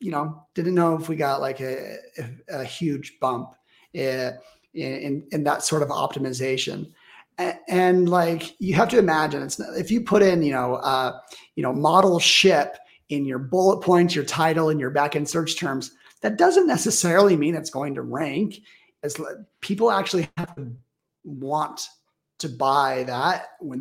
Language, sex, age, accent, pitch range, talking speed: English, male, 30-49, American, 140-185 Hz, 175 wpm